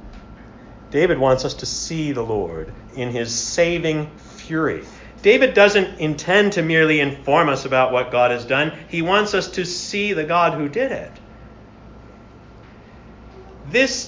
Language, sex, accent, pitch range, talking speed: English, male, American, 120-185 Hz, 145 wpm